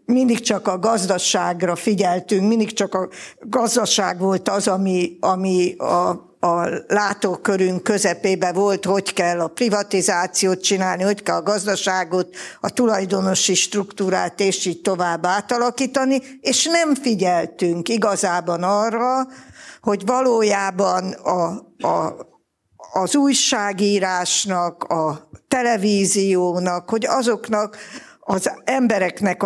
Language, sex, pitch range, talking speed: Hungarian, female, 180-235 Hz, 105 wpm